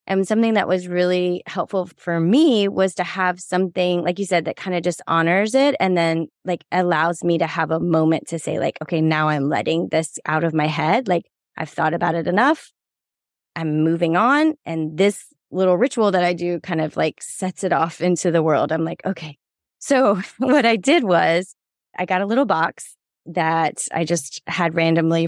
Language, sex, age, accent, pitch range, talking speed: English, female, 20-39, American, 165-200 Hz, 200 wpm